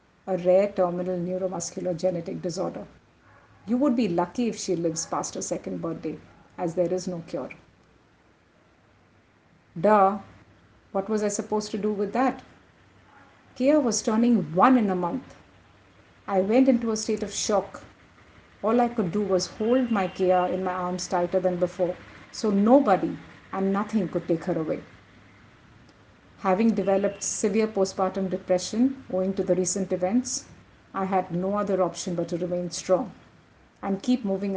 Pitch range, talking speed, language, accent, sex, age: 180-210 Hz, 155 wpm, English, Indian, female, 50-69